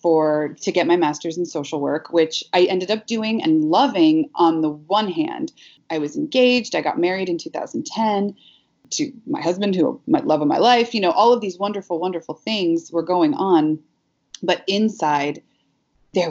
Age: 30-49